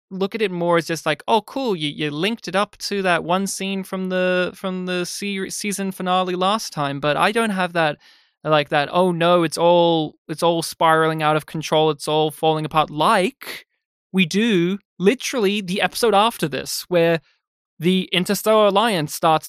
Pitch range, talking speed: 160-200 Hz, 190 wpm